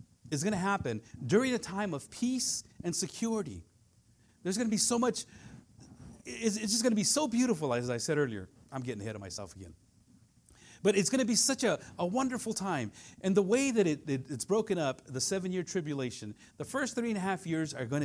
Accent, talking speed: American, 210 wpm